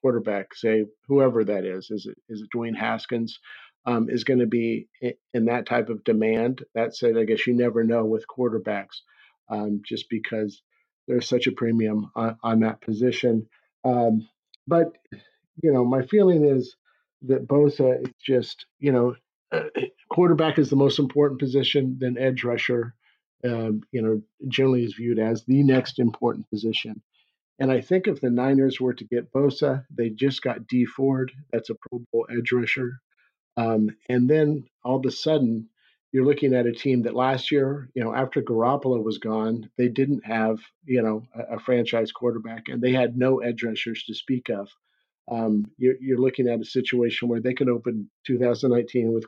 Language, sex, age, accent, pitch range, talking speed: English, male, 50-69, American, 115-130 Hz, 175 wpm